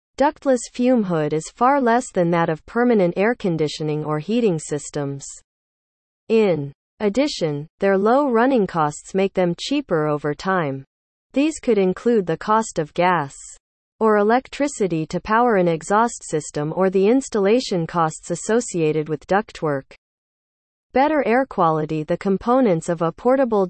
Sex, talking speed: female, 140 wpm